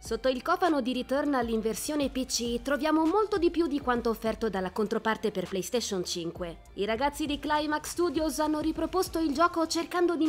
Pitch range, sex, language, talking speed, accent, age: 225-305 Hz, female, Italian, 175 wpm, native, 20-39